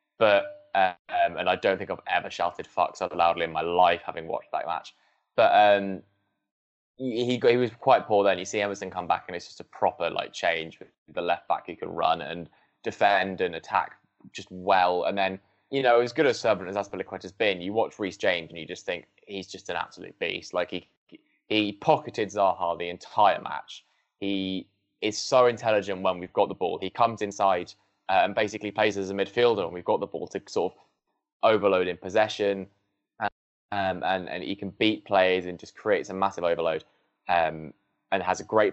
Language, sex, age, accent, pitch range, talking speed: English, male, 10-29, British, 90-110 Hz, 210 wpm